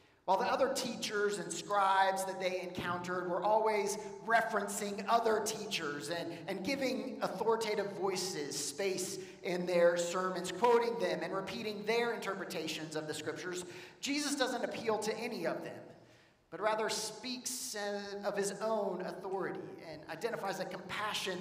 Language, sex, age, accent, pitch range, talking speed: English, male, 30-49, American, 165-215 Hz, 140 wpm